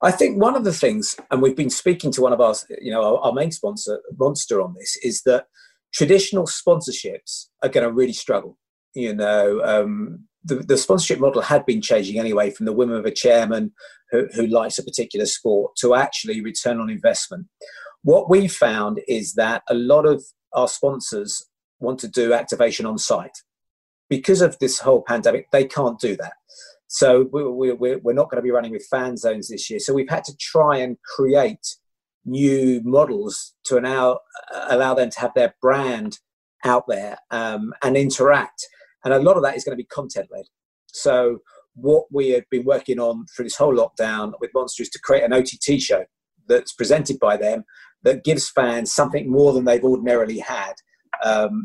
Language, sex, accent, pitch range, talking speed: English, male, British, 120-185 Hz, 185 wpm